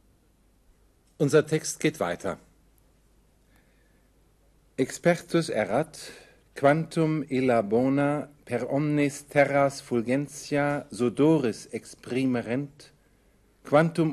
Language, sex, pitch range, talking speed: German, male, 120-155 Hz, 70 wpm